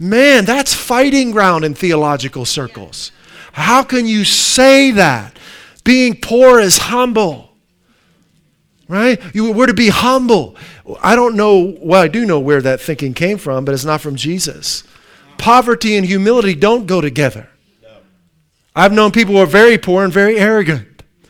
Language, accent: English, American